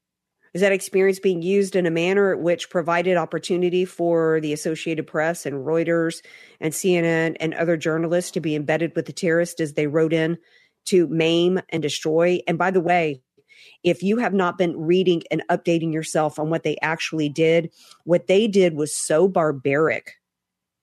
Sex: female